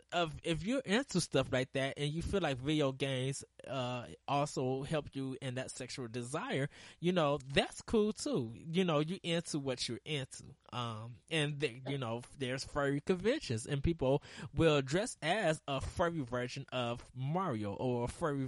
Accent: American